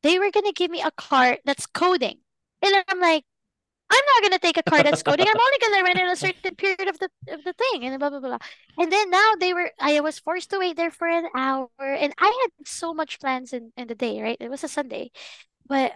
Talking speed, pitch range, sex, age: 250 wpm, 265-360 Hz, female, 20-39